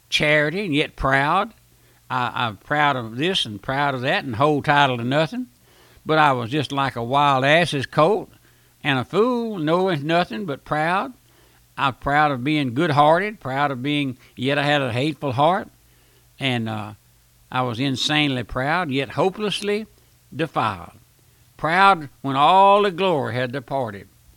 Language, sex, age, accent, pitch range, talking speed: English, male, 60-79, American, 125-175 Hz, 160 wpm